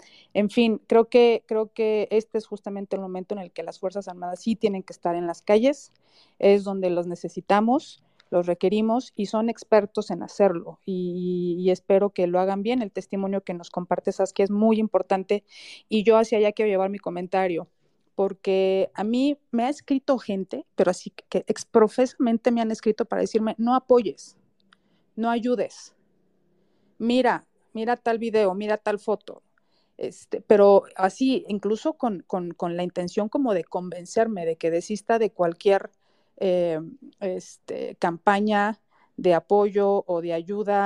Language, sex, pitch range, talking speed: Spanish, female, 185-230 Hz, 165 wpm